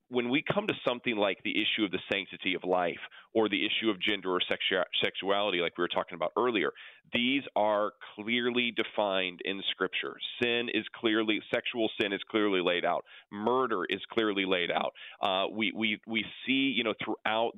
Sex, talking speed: male, 185 wpm